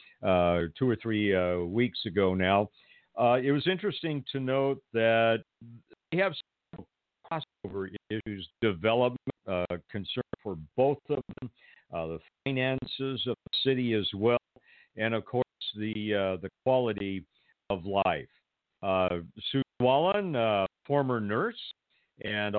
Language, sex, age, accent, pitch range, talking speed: English, male, 50-69, American, 95-130 Hz, 135 wpm